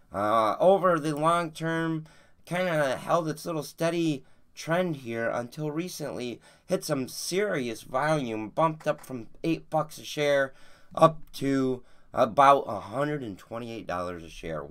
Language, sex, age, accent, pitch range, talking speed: English, male, 30-49, American, 90-145 Hz, 130 wpm